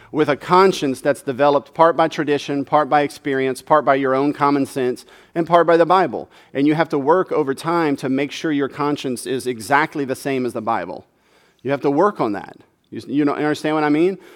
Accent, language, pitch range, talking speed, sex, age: American, English, 135-185 Hz, 220 wpm, male, 40-59